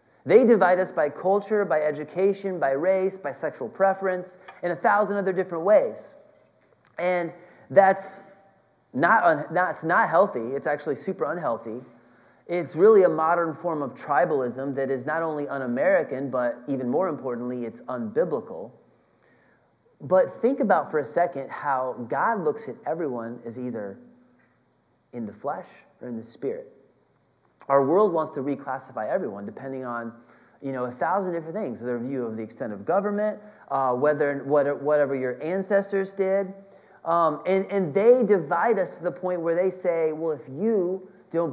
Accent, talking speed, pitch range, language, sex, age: American, 160 wpm, 140-195 Hz, English, male, 30-49